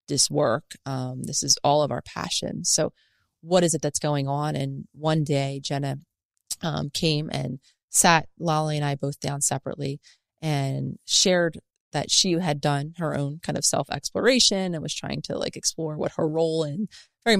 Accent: American